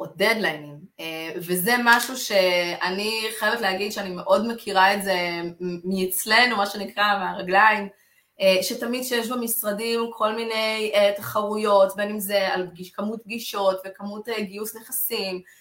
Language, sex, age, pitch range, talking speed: Hebrew, female, 20-39, 195-265 Hz, 115 wpm